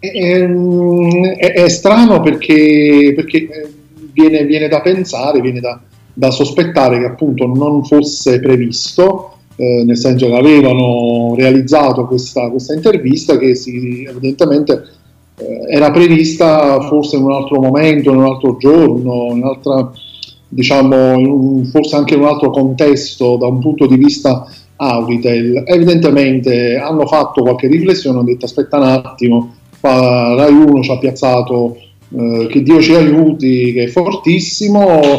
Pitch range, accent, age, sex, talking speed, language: 125-155 Hz, native, 40-59, male, 140 wpm, Italian